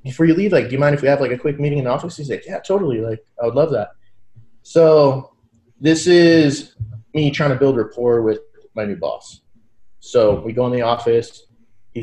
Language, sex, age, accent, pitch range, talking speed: English, male, 20-39, American, 115-145 Hz, 225 wpm